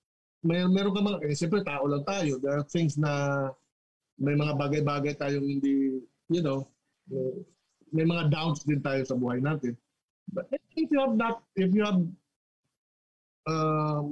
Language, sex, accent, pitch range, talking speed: Filipino, male, native, 135-175 Hz, 160 wpm